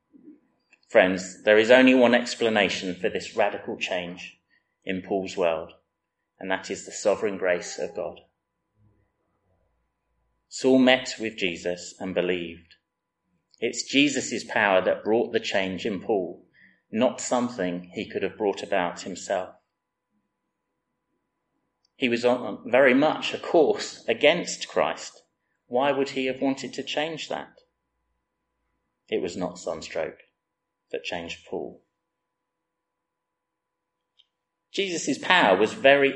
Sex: male